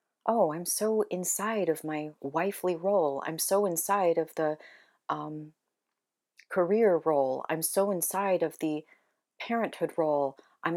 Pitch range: 155-190 Hz